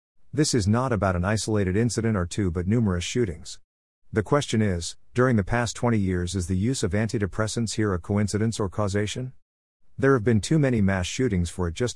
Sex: male